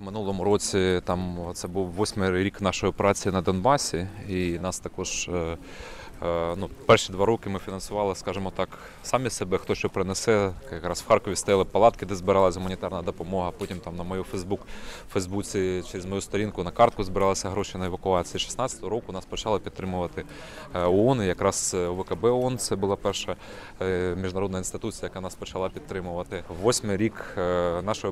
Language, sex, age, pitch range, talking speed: Ukrainian, male, 20-39, 90-105 Hz, 155 wpm